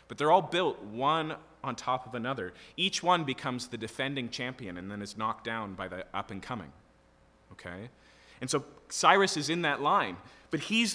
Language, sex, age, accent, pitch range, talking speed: English, male, 30-49, American, 110-150 Hz, 190 wpm